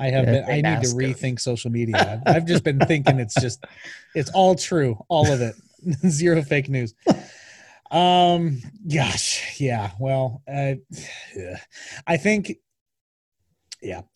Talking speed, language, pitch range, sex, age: 140 wpm, English, 115-160 Hz, male, 30-49